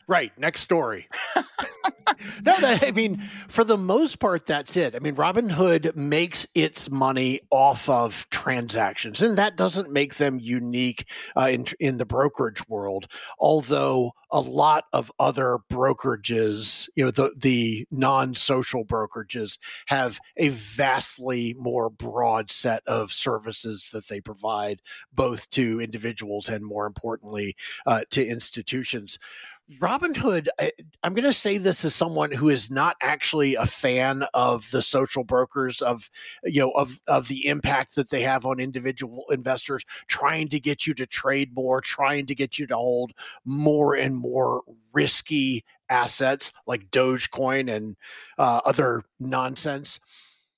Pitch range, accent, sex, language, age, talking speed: 120-150 Hz, American, male, English, 40-59, 145 wpm